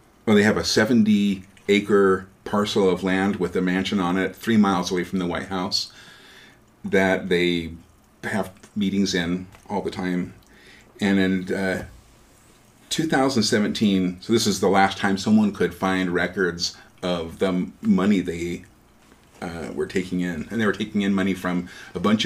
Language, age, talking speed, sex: English, 40-59, 160 wpm, male